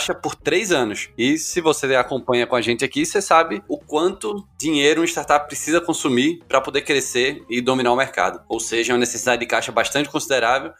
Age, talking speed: 20-39, 205 wpm